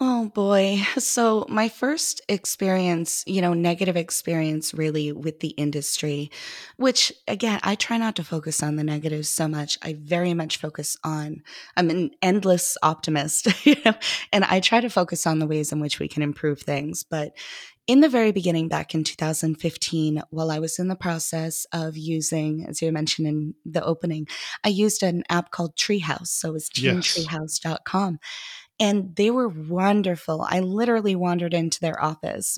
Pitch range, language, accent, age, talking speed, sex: 155-200 Hz, English, American, 20-39, 170 wpm, female